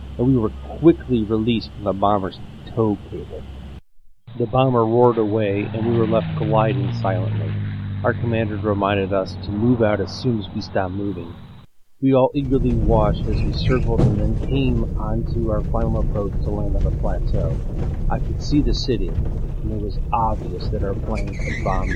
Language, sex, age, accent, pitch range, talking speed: English, male, 40-59, American, 95-120 Hz, 180 wpm